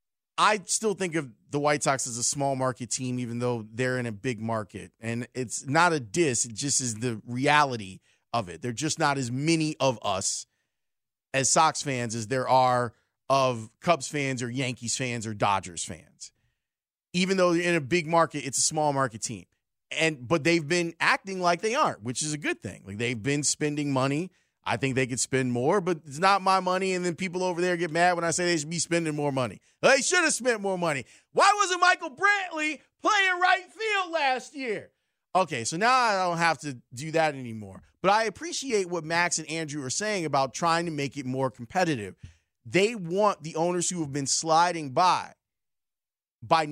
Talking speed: 205 wpm